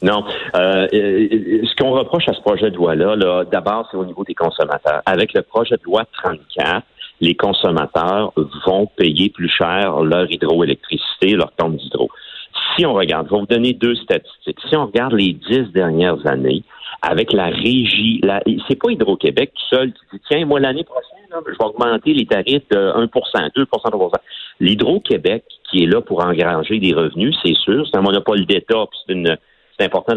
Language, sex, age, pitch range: French, male, 50-69, 100-160 Hz